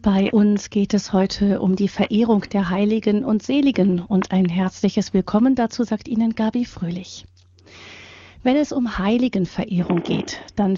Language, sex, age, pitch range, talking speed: German, female, 40-59, 180-220 Hz, 150 wpm